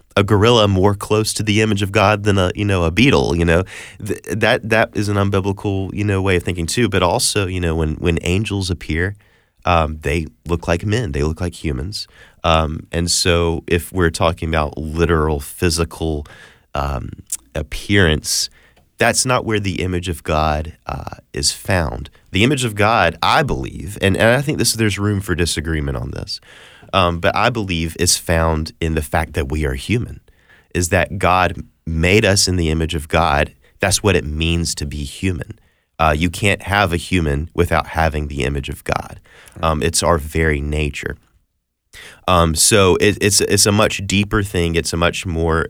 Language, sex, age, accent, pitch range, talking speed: English, male, 30-49, American, 80-100 Hz, 190 wpm